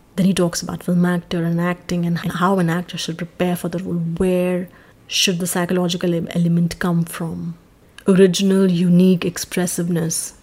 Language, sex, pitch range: English, female, 170-180 Hz